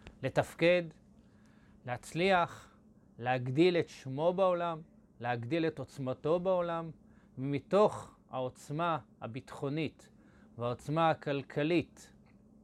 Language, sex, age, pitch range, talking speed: Hebrew, male, 30-49, 125-170 Hz, 70 wpm